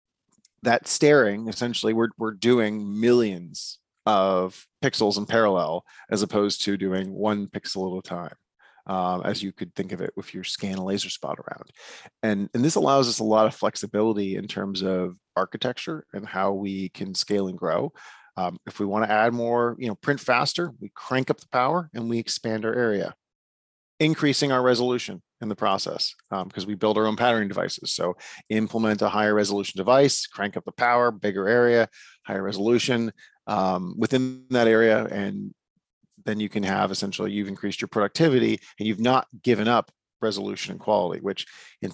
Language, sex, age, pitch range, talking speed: English, male, 40-59, 100-120 Hz, 180 wpm